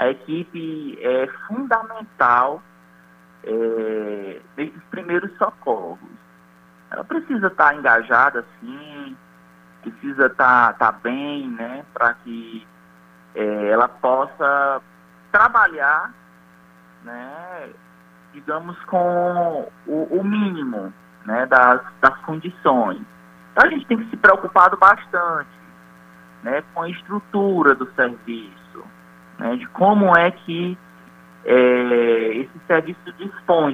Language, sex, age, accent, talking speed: Portuguese, male, 20-39, Brazilian, 100 wpm